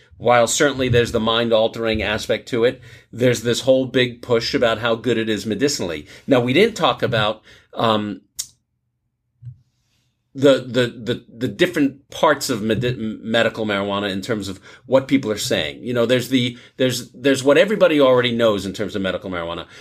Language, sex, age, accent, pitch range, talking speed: English, male, 50-69, American, 110-135 Hz, 175 wpm